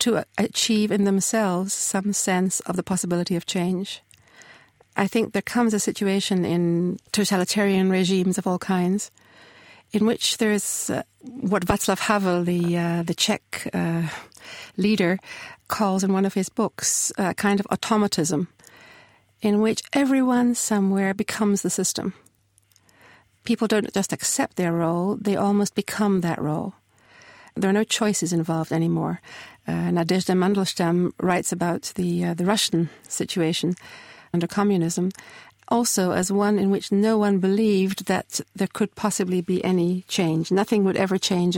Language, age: English, 60-79